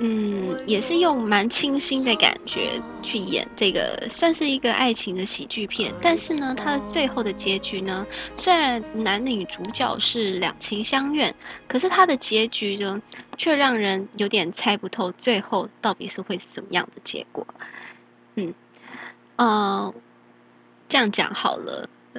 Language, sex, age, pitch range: Chinese, female, 10-29, 195-260 Hz